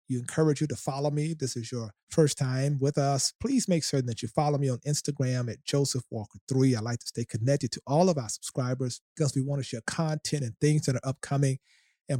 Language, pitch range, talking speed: English, 120-145 Hz, 225 wpm